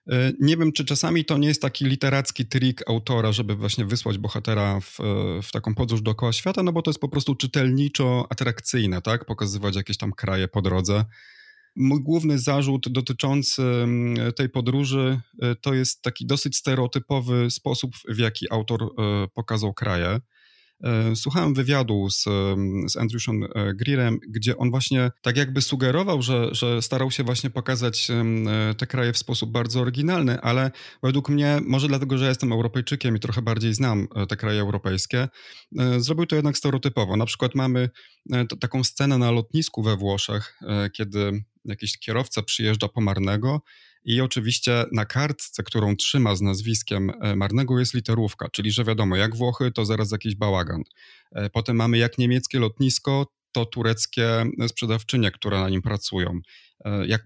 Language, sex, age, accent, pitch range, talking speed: Polish, male, 30-49, native, 105-130 Hz, 150 wpm